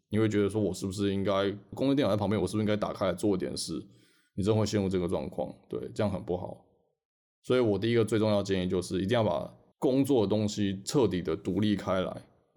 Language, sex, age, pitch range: Chinese, male, 20-39, 95-110 Hz